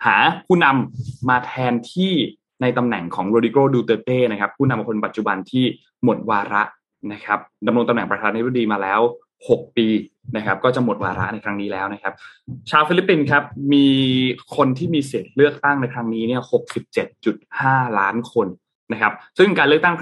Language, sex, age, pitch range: Thai, male, 20-39, 110-135 Hz